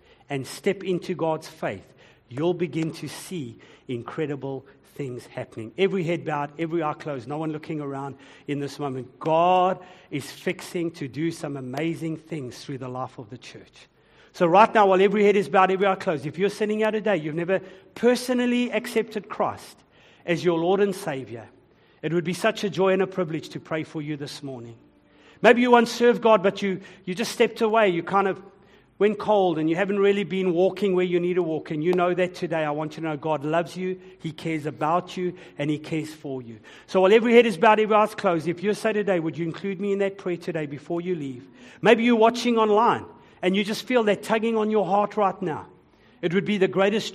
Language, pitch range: English, 150-200 Hz